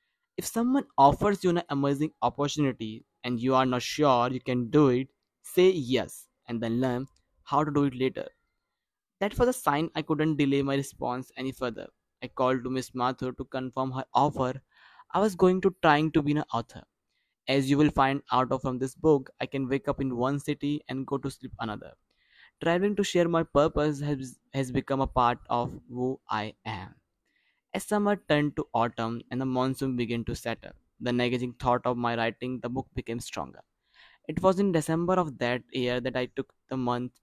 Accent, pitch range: native, 125-150 Hz